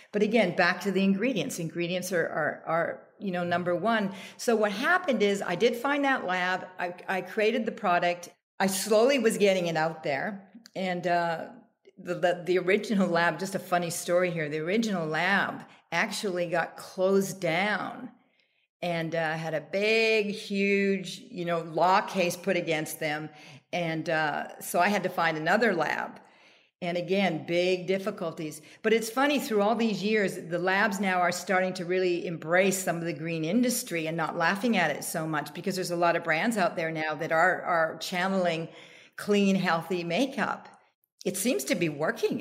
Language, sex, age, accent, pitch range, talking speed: English, female, 50-69, American, 170-210 Hz, 180 wpm